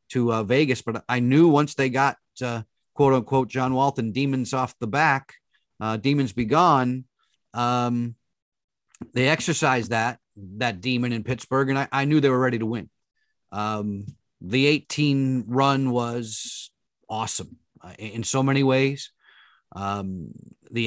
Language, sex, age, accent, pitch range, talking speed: English, male, 40-59, American, 110-130 Hz, 145 wpm